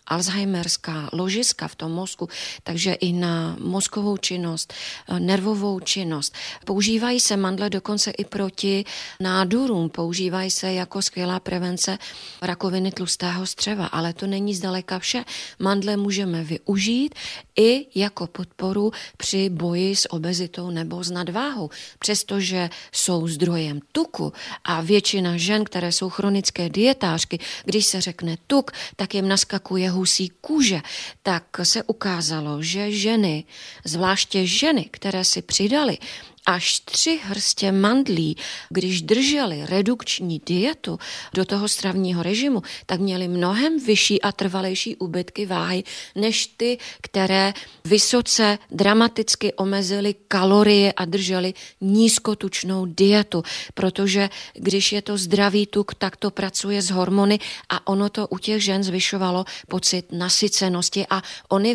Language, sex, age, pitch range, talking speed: Czech, female, 30-49, 180-205 Hz, 125 wpm